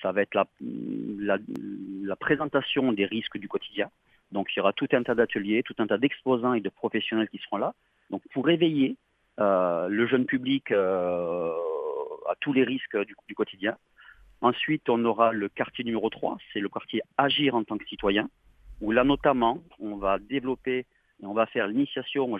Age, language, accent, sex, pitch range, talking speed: 40-59, French, French, male, 110-140 Hz, 190 wpm